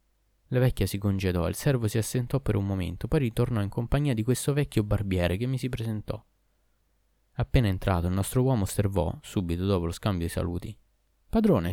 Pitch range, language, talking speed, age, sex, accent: 95-130 Hz, Italian, 185 wpm, 20-39, male, native